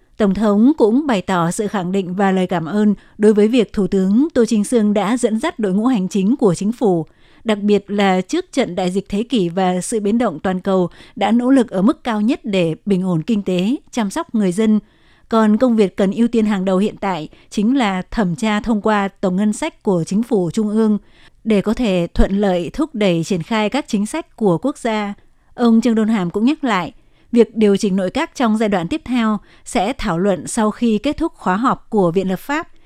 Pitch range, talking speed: 190-235 Hz, 235 wpm